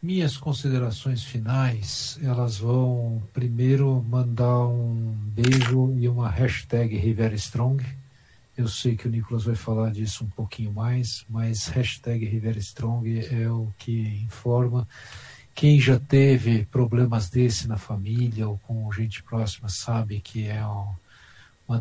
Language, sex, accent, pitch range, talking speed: Portuguese, male, Brazilian, 110-125 Hz, 130 wpm